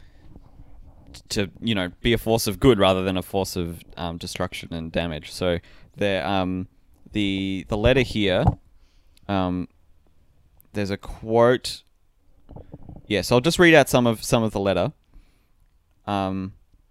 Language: English